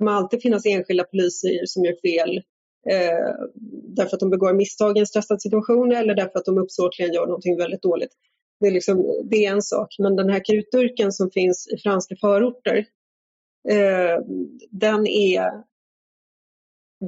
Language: Swedish